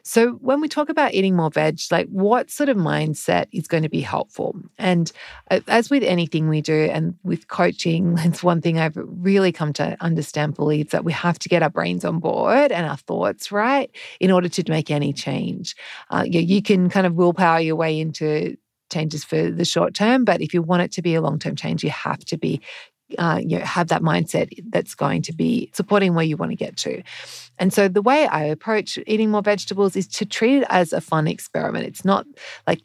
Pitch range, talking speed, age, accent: 165-210 Hz, 225 wpm, 40-59, Australian